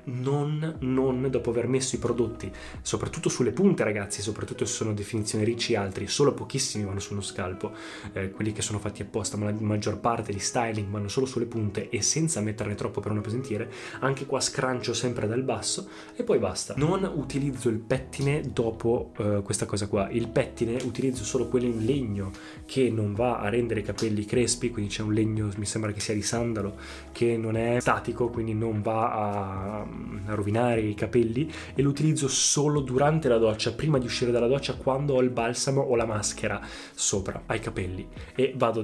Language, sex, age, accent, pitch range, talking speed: Italian, male, 20-39, native, 105-130 Hz, 190 wpm